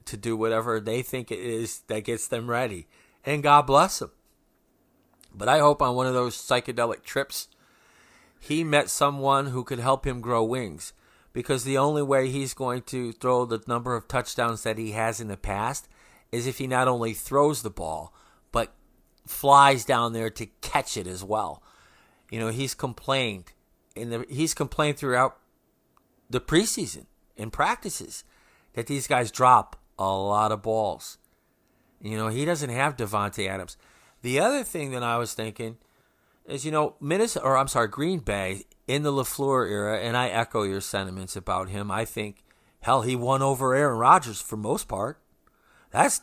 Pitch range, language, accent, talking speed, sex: 110-135 Hz, English, American, 175 wpm, male